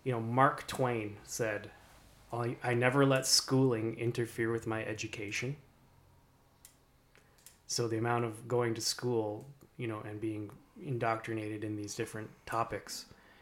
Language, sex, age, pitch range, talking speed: English, male, 20-39, 110-130 Hz, 130 wpm